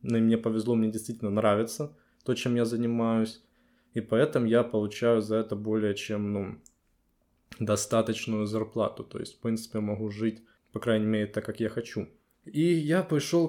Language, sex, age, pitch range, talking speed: Ukrainian, male, 20-39, 110-125 Hz, 165 wpm